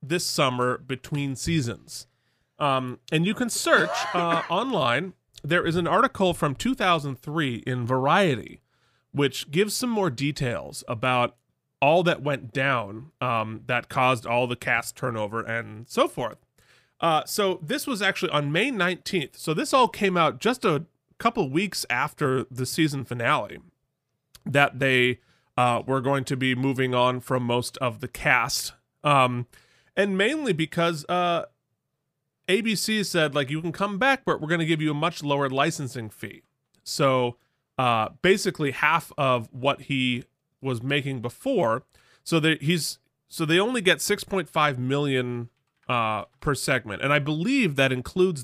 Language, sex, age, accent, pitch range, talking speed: English, male, 30-49, American, 125-170 Hz, 155 wpm